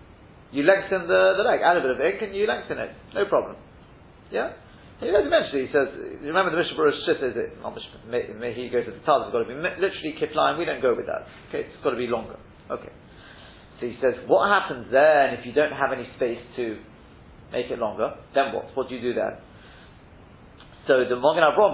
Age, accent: 40-59, British